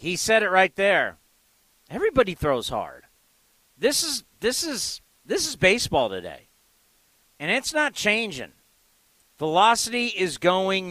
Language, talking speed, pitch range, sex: English, 125 wpm, 155-205 Hz, male